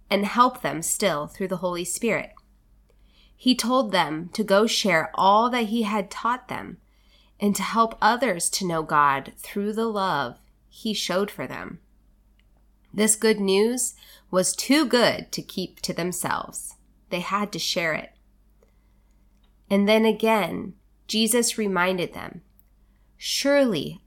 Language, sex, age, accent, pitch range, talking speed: English, female, 20-39, American, 180-240 Hz, 140 wpm